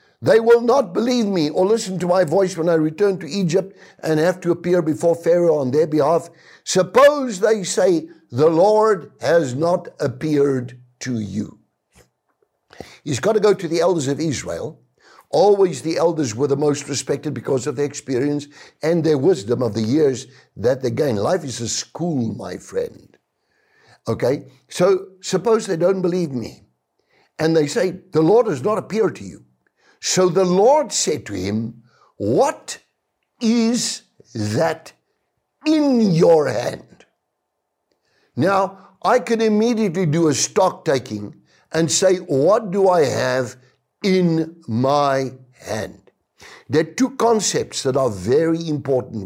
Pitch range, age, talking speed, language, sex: 145-195 Hz, 60-79, 150 wpm, English, male